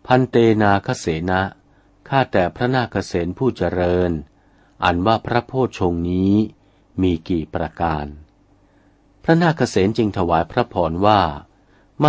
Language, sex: Thai, male